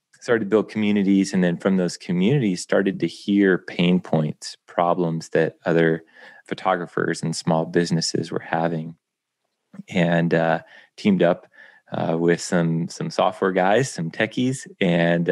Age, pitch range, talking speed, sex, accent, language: 30-49, 80-95 Hz, 140 wpm, male, American, English